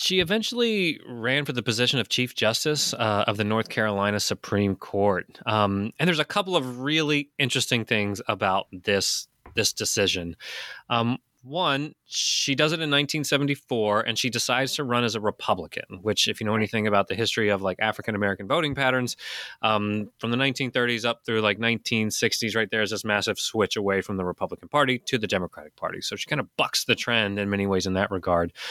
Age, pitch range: 20-39, 105-135 Hz